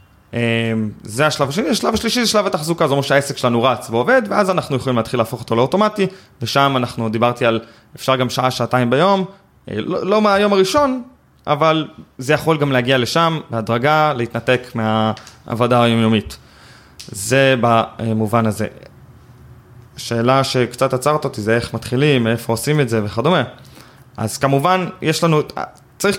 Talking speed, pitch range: 145 wpm, 115-145 Hz